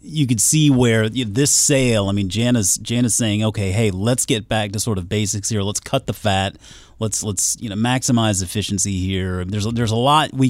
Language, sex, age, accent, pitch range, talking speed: English, male, 30-49, American, 95-125 Hz, 225 wpm